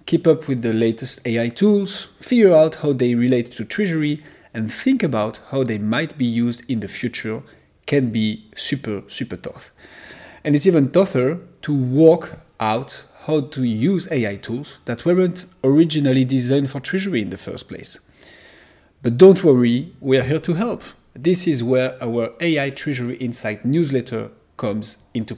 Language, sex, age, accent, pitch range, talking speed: English, male, 30-49, French, 115-160 Hz, 165 wpm